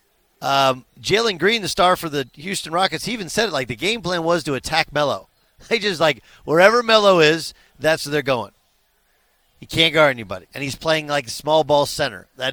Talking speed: 210 wpm